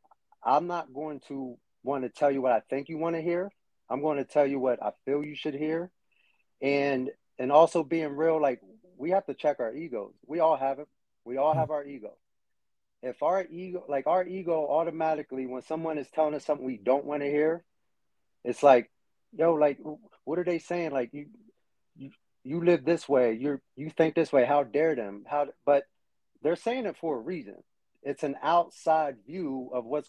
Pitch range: 135-165 Hz